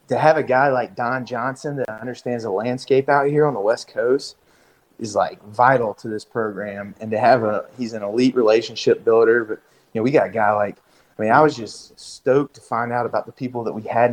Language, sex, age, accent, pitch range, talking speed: English, male, 30-49, American, 110-125 Hz, 235 wpm